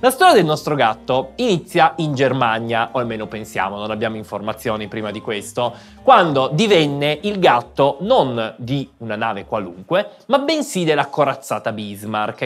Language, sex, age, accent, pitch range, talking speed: Italian, male, 20-39, native, 110-155 Hz, 150 wpm